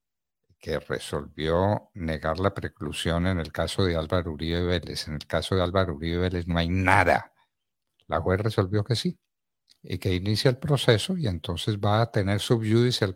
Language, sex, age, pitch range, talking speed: Spanish, male, 50-69, 85-115 Hz, 180 wpm